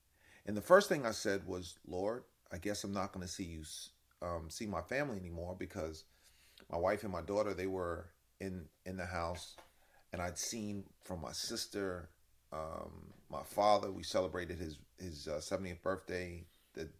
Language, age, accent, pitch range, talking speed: English, 30-49, American, 85-95 Hz, 175 wpm